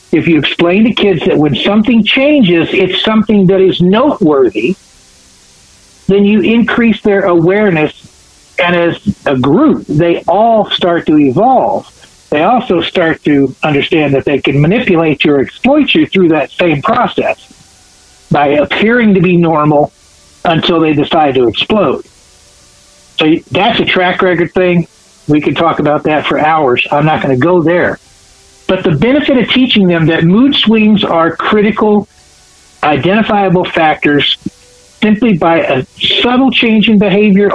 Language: English